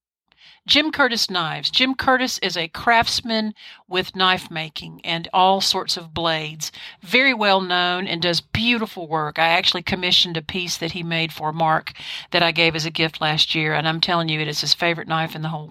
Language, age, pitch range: English, 50-69, 160-215 Hz